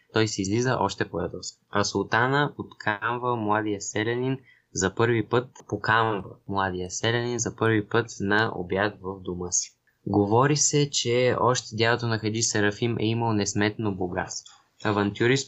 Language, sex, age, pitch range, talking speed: Bulgarian, male, 20-39, 100-120 Hz, 145 wpm